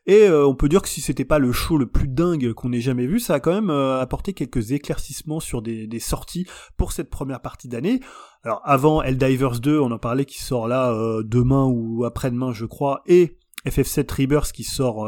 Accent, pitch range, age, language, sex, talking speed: French, 120-160 Hz, 20-39, French, male, 225 wpm